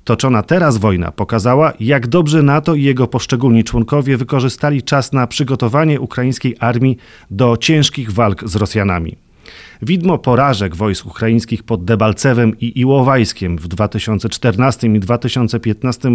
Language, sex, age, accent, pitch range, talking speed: Polish, male, 40-59, native, 110-145 Hz, 125 wpm